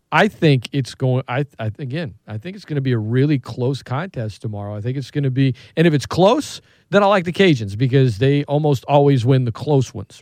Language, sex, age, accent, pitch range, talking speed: English, male, 40-59, American, 120-155 Hz, 255 wpm